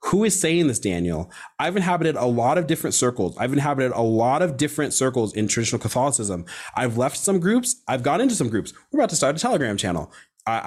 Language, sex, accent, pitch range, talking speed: English, male, American, 115-155 Hz, 220 wpm